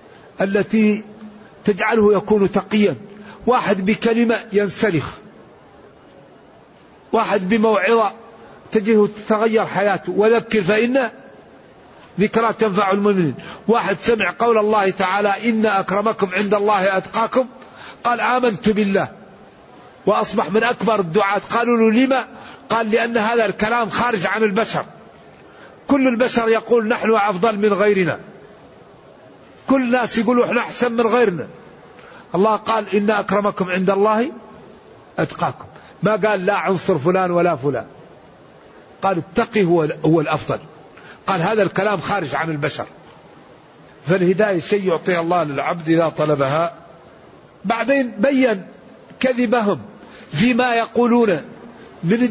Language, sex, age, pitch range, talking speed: Arabic, male, 50-69, 195-230 Hz, 110 wpm